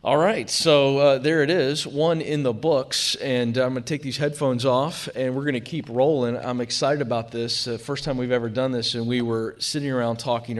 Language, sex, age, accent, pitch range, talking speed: English, male, 40-59, American, 115-145 Hz, 225 wpm